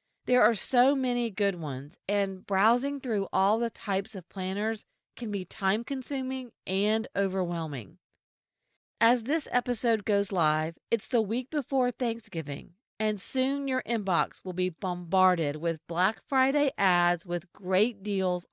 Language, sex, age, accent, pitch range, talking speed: English, female, 40-59, American, 180-250 Hz, 145 wpm